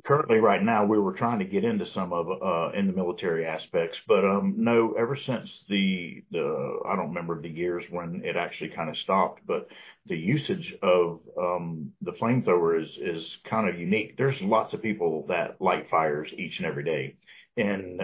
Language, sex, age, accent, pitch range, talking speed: English, male, 50-69, American, 85-135 Hz, 195 wpm